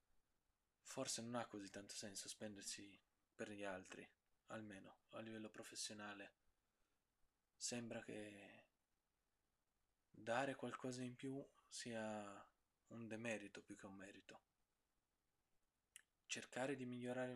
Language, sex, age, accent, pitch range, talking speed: Italian, male, 20-39, native, 105-125 Hz, 105 wpm